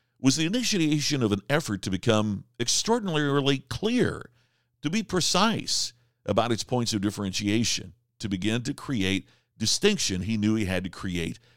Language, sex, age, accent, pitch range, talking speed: English, male, 50-69, American, 100-135 Hz, 150 wpm